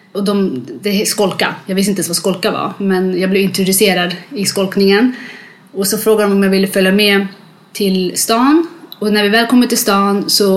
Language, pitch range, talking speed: English, 190-220 Hz, 205 wpm